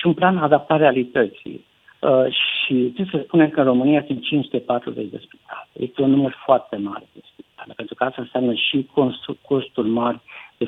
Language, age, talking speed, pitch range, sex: Romanian, 60-79, 185 wpm, 120-160 Hz, male